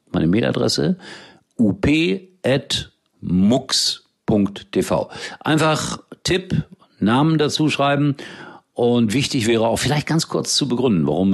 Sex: male